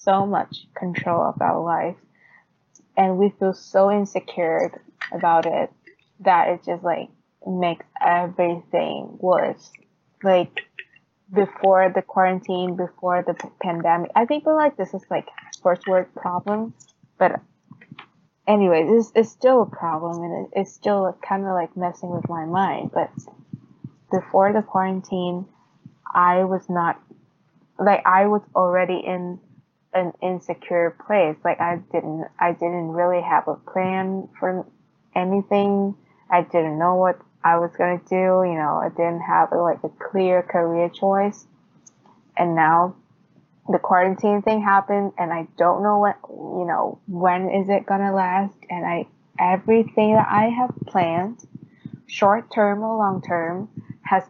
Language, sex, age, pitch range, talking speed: Vietnamese, female, 20-39, 175-195 Hz, 145 wpm